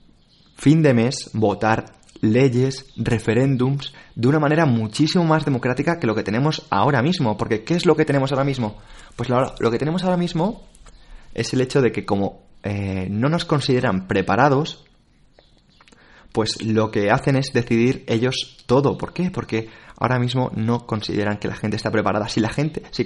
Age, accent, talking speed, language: 20-39, Spanish, 175 wpm, Spanish